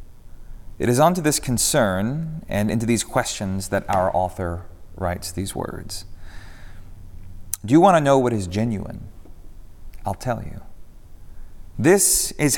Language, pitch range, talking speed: English, 90-115 Hz, 135 wpm